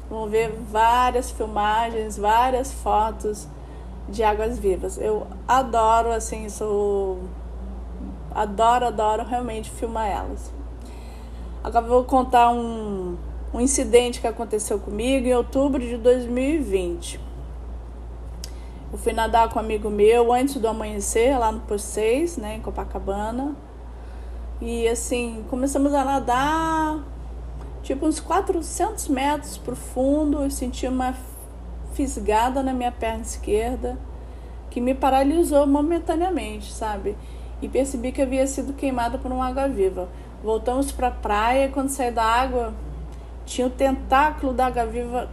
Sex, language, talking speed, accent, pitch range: female, Portuguese, 120 wpm, Brazilian, 210-265 Hz